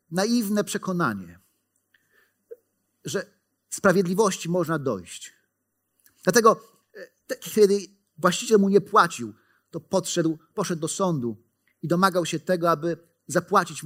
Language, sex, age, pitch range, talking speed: Polish, male, 40-59, 125-175 Hz, 95 wpm